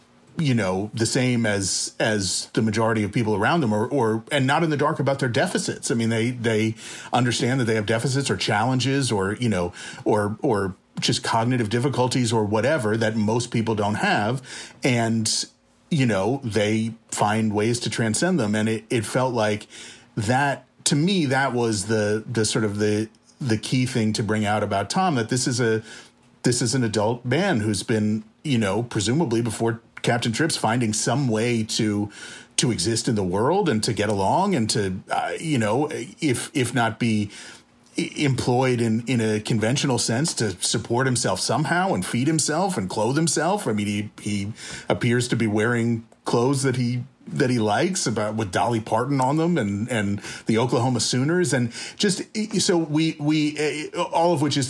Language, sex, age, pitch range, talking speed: English, male, 40-59, 110-135 Hz, 185 wpm